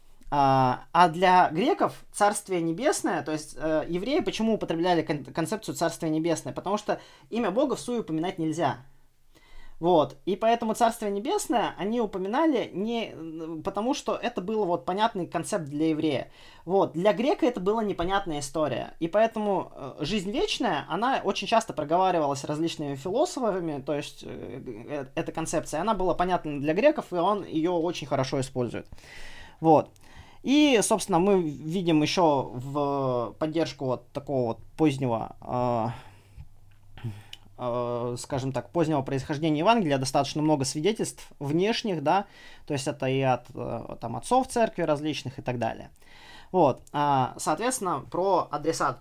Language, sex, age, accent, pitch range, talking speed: Russian, male, 20-39, native, 135-190 Hz, 130 wpm